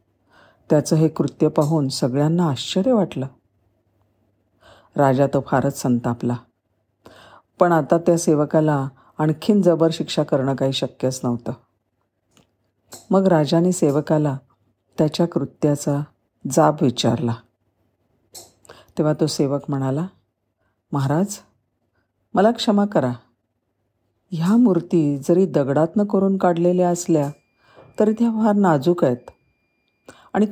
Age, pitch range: 50-69, 135-175 Hz